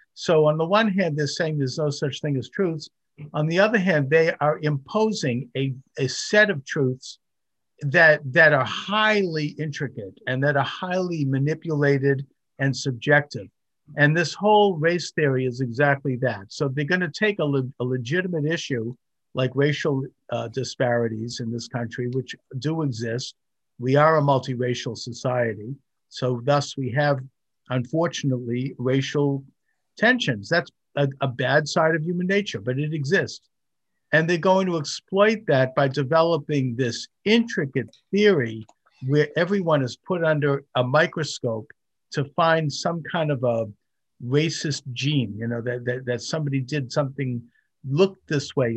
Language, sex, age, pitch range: English, male, 50-69, 130-160 Hz